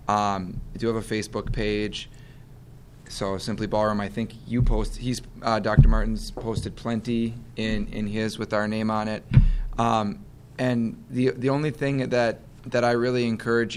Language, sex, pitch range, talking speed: English, male, 110-130 Hz, 170 wpm